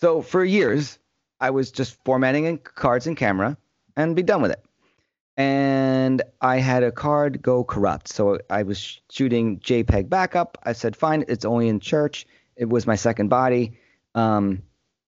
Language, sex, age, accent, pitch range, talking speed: English, male, 30-49, American, 110-145 Hz, 165 wpm